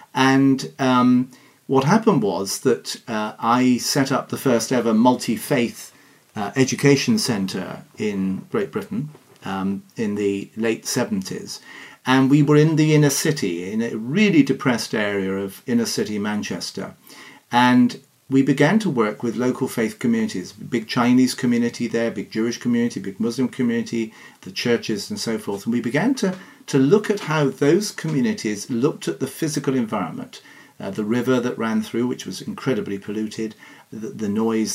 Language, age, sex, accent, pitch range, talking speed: English, 40-59, male, British, 115-160 Hz, 160 wpm